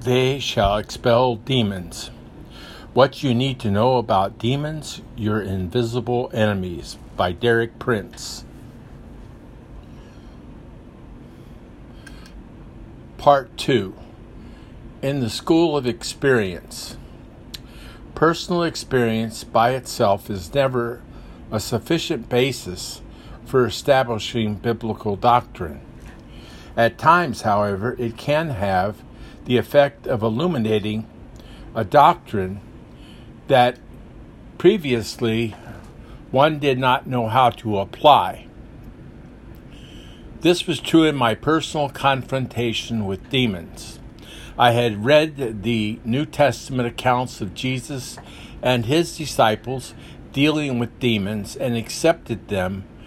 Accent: American